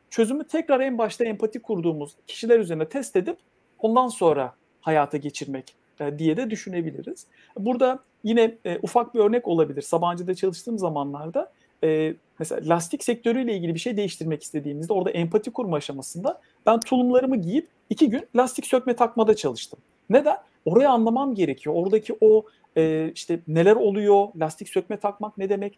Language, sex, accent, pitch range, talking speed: Turkish, male, native, 165-235 Hz, 145 wpm